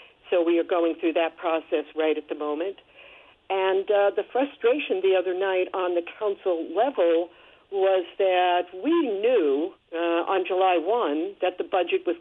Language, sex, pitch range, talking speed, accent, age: English, female, 170-275 Hz, 165 wpm, American, 60-79